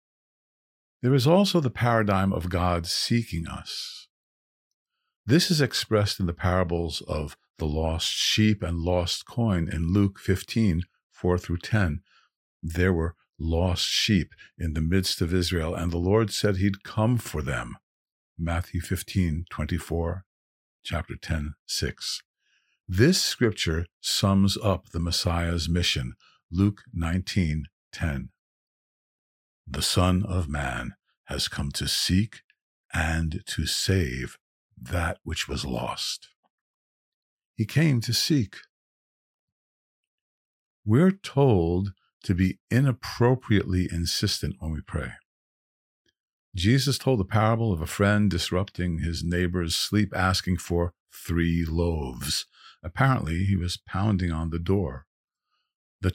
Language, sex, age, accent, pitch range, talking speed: English, male, 50-69, American, 85-100 Hz, 115 wpm